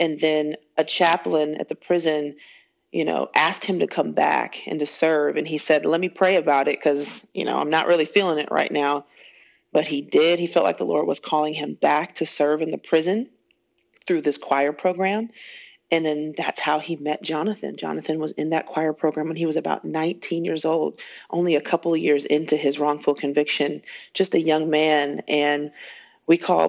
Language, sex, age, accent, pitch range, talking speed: English, female, 30-49, American, 150-165 Hz, 205 wpm